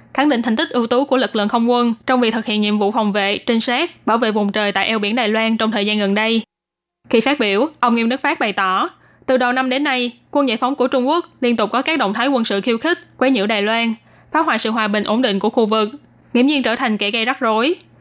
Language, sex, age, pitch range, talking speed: Vietnamese, female, 20-39, 215-260 Hz, 290 wpm